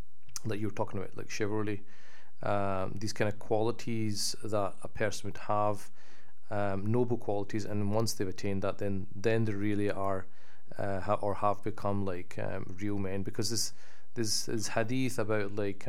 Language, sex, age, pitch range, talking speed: English, male, 30-49, 100-110 Hz, 175 wpm